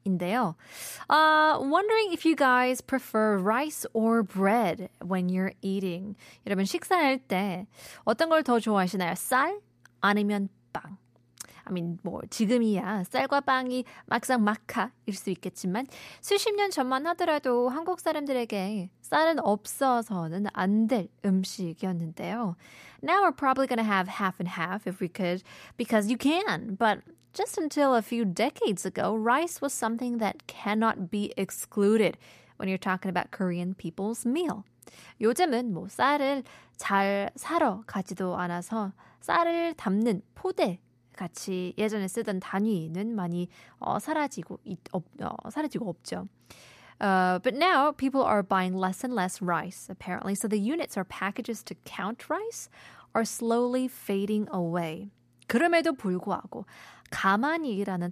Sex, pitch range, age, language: female, 185-260 Hz, 20-39, Korean